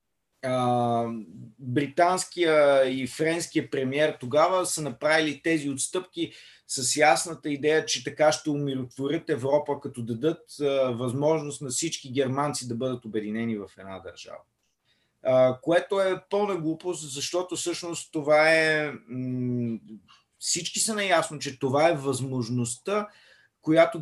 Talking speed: 120 wpm